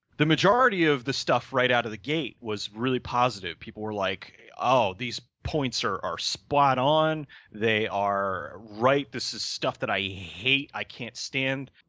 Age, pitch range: 30-49, 110-140 Hz